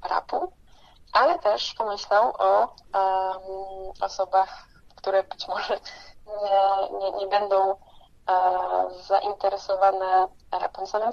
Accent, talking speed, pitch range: native, 85 wpm, 190-210 Hz